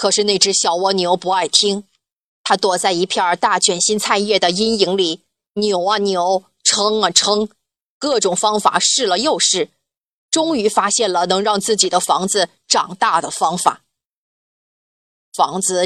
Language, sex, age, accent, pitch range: Chinese, female, 20-39, native, 185-220 Hz